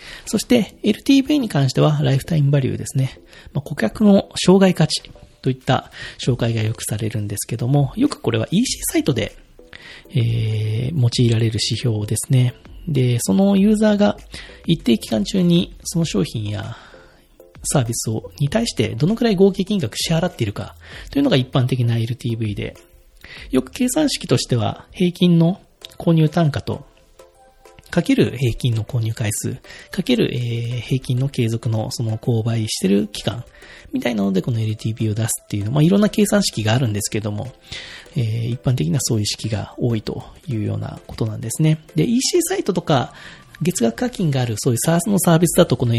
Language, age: Japanese, 40-59